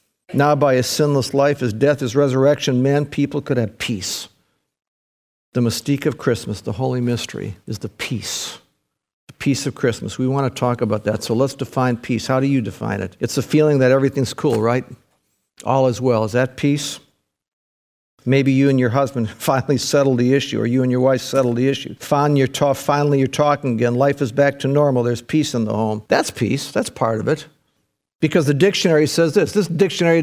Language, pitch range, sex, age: English, 130-185 Hz, male, 50-69